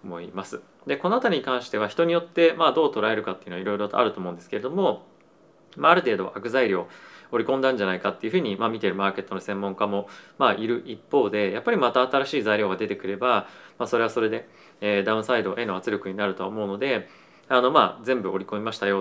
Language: Japanese